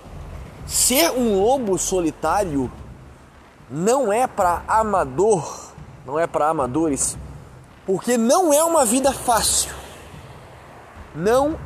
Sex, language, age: male, Portuguese, 20-39